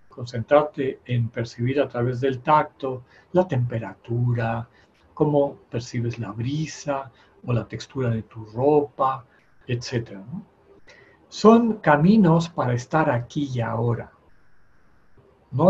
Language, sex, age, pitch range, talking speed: Spanish, male, 60-79, 120-155 Hz, 105 wpm